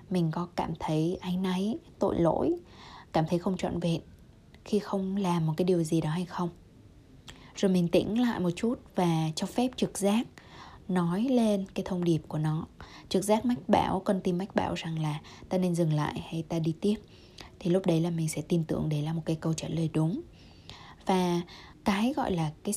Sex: female